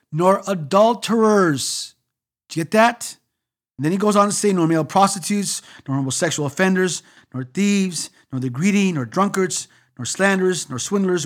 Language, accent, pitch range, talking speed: English, American, 135-200 Hz, 165 wpm